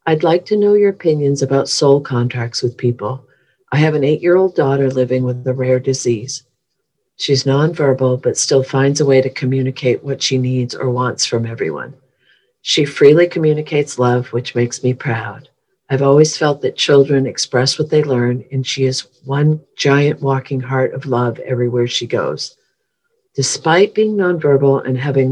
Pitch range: 130-145 Hz